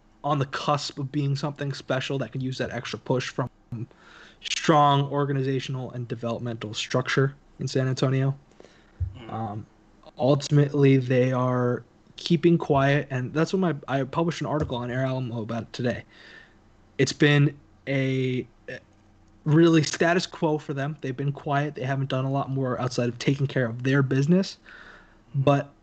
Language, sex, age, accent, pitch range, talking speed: English, male, 20-39, American, 120-145 Hz, 155 wpm